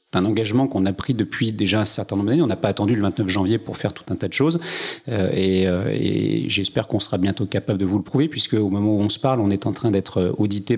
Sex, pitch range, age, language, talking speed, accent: male, 100-120 Hz, 40-59, French, 285 wpm, French